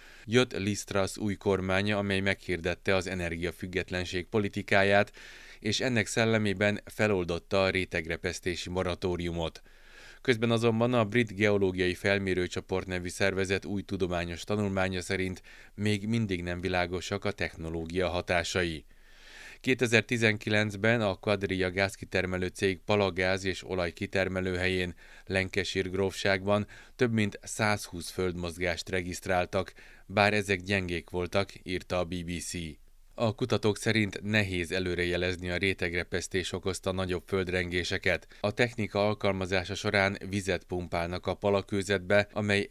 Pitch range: 90-100 Hz